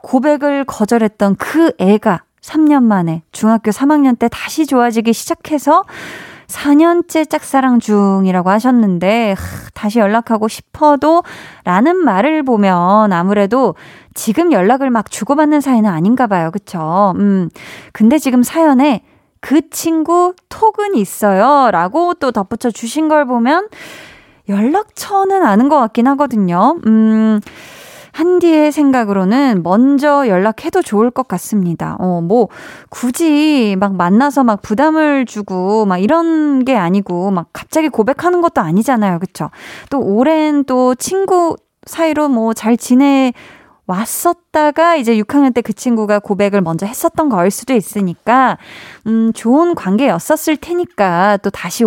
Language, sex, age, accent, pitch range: Korean, female, 20-39, native, 200-290 Hz